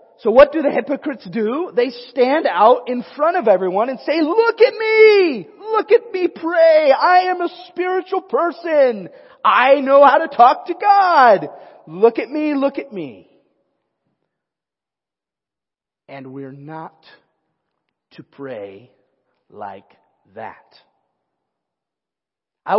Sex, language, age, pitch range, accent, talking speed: male, English, 30-49, 160-265 Hz, American, 125 wpm